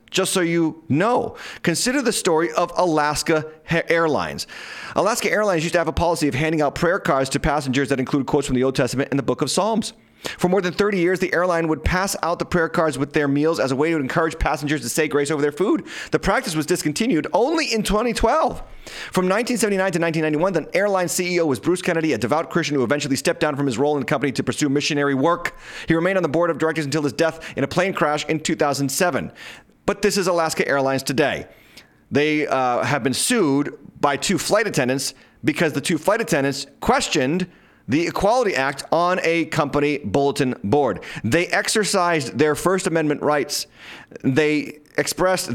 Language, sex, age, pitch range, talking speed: English, male, 30-49, 140-175 Hz, 200 wpm